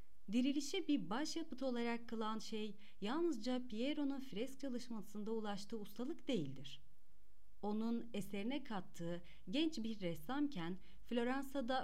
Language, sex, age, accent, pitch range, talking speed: Turkish, female, 40-59, native, 175-260 Hz, 100 wpm